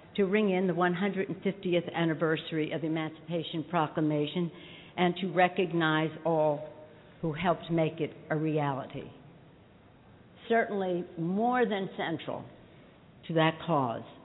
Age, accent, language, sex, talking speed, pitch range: 60-79, American, English, female, 115 wpm, 160-190 Hz